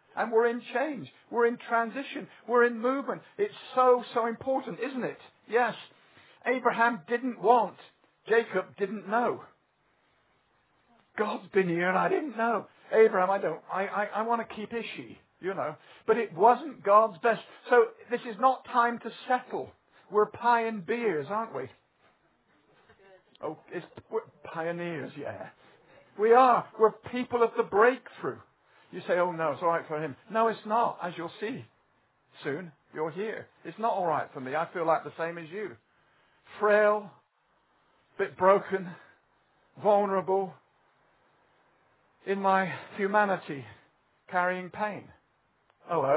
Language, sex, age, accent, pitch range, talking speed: English, male, 50-69, British, 160-230 Hz, 145 wpm